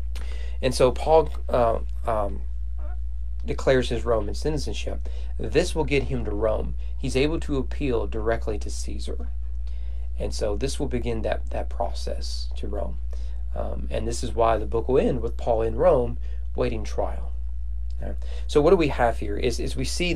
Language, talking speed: English, 175 wpm